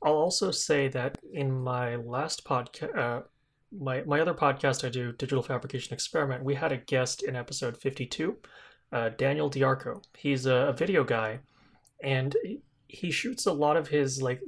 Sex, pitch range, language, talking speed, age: male, 125-145 Hz, English, 170 wpm, 20-39